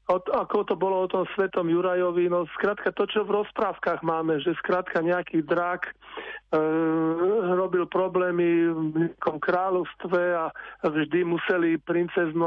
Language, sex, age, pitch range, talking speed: Slovak, male, 50-69, 160-180 Hz, 140 wpm